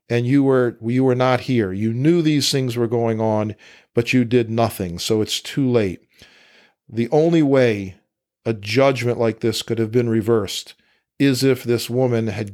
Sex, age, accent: male, 50-69, American